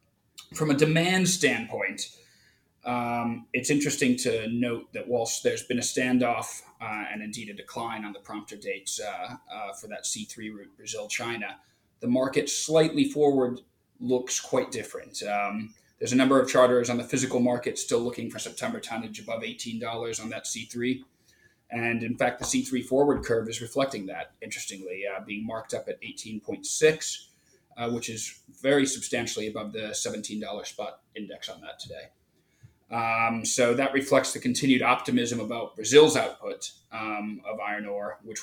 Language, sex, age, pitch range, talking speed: English, male, 30-49, 110-135 Hz, 160 wpm